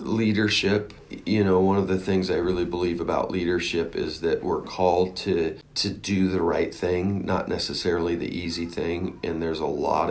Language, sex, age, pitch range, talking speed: English, male, 40-59, 85-105 Hz, 185 wpm